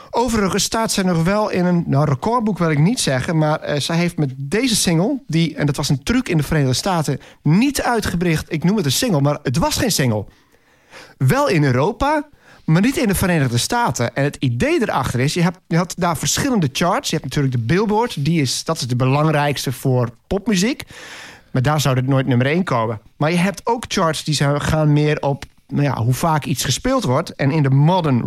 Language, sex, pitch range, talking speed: Dutch, male, 140-190 Hz, 220 wpm